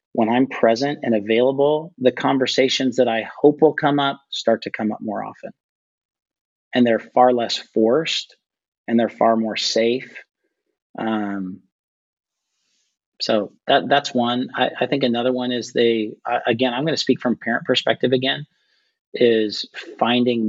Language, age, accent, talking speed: English, 40-59, American, 160 wpm